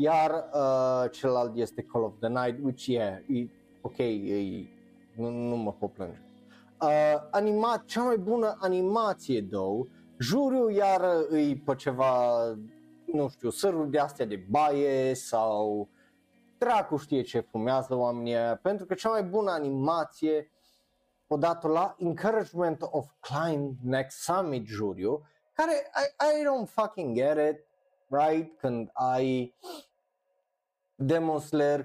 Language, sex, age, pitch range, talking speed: Romanian, male, 30-49, 125-185 Hz, 125 wpm